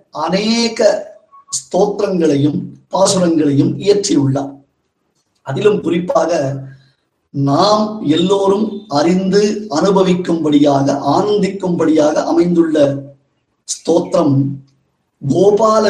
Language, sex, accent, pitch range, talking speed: Tamil, male, native, 145-205 Hz, 55 wpm